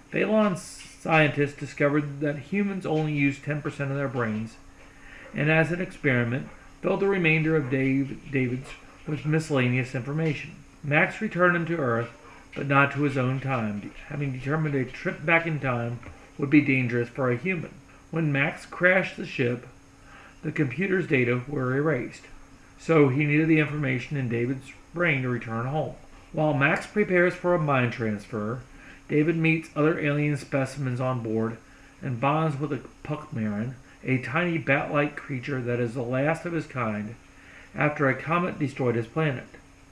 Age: 40-59